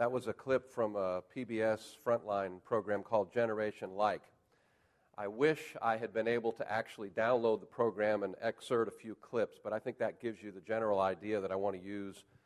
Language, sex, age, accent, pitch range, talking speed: English, male, 40-59, American, 105-130 Hz, 200 wpm